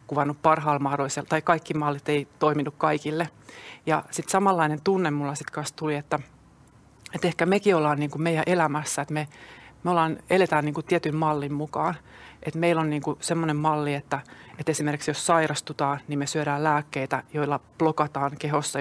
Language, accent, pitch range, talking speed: Finnish, native, 140-160 Hz, 170 wpm